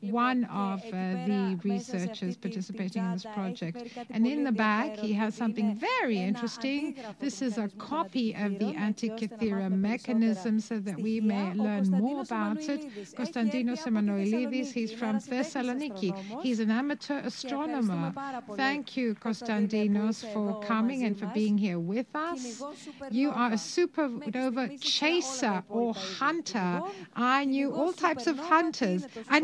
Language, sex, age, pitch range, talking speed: Greek, female, 60-79, 215-265 Hz, 140 wpm